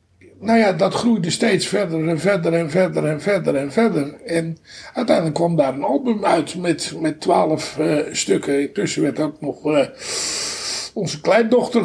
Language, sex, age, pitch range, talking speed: Dutch, male, 60-79, 155-215 Hz, 175 wpm